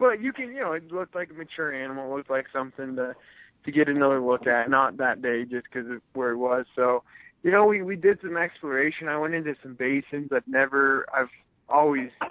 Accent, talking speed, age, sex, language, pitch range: American, 225 wpm, 20-39, male, English, 125-145 Hz